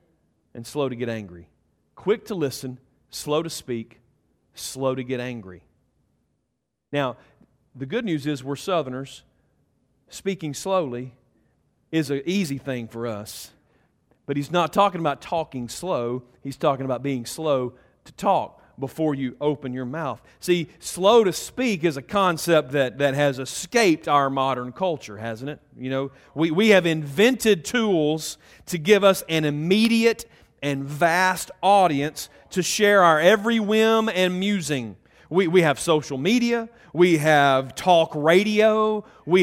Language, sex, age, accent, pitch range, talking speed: English, male, 40-59, American, 135-195 Hz, 150 wpm